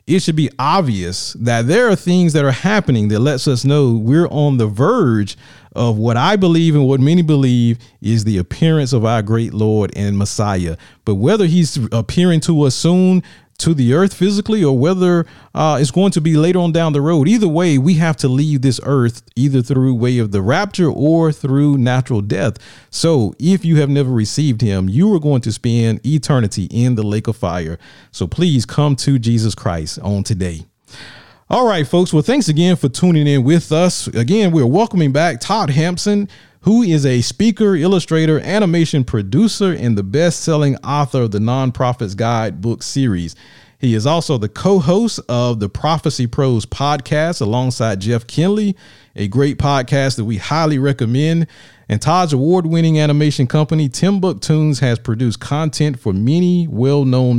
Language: English